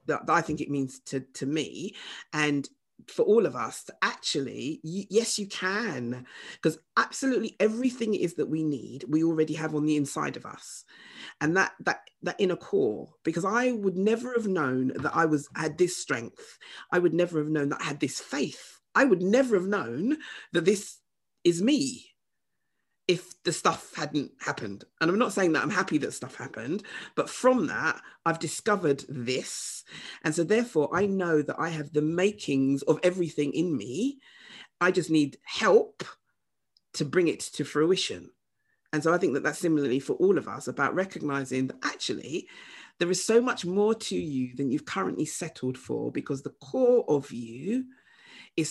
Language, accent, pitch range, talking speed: English, British, 150-210 Hz, 180 wpm